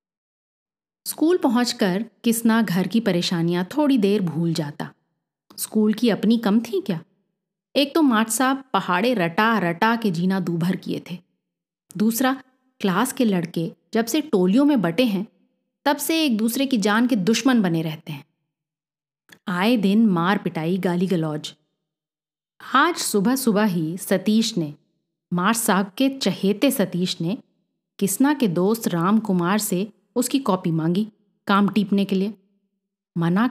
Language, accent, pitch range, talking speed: Hindi, native, 180-240 Hz, 145 wpm